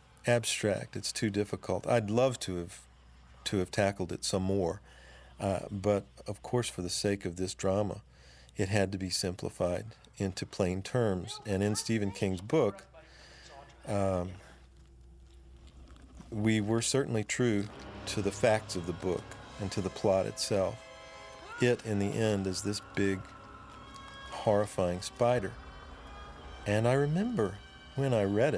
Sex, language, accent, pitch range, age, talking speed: male, English, American, 85-105 Hz, 50-69, 145 wpm